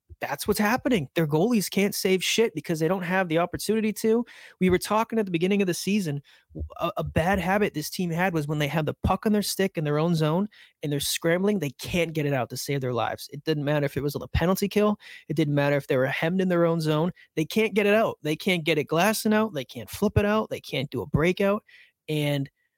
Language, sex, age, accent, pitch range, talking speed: English, male, 30-49, American, 145-185 Hz, 260 wpm